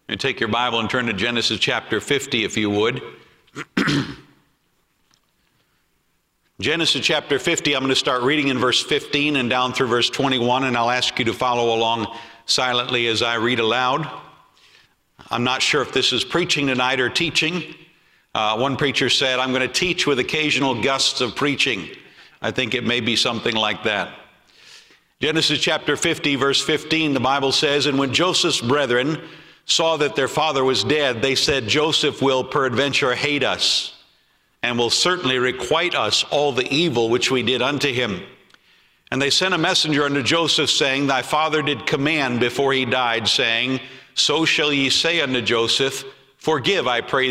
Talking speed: 170 wpm